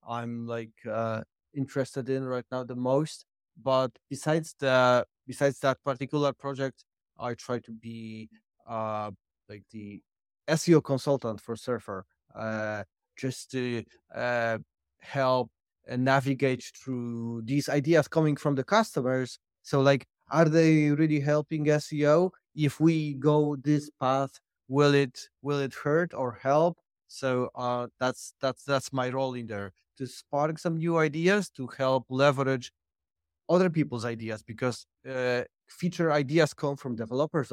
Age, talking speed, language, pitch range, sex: 30-49, 145 wpm, English, 120-155 Hz, male